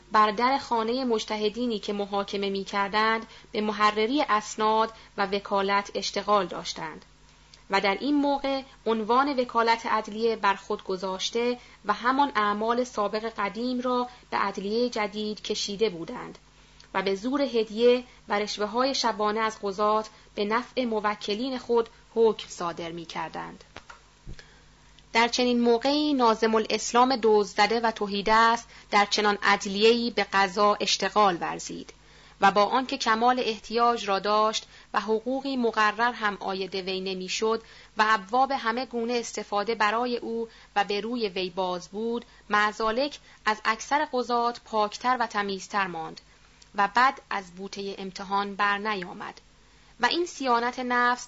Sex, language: female, Persian